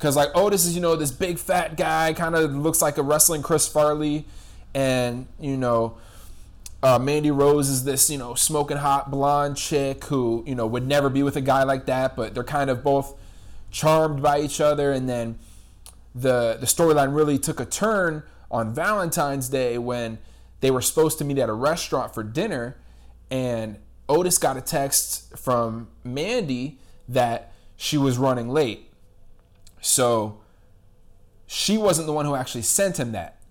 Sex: male